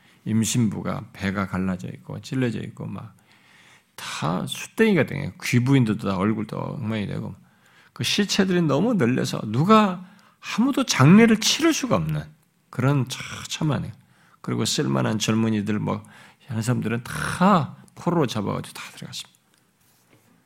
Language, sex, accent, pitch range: Korean, male, native, 105-165 Hz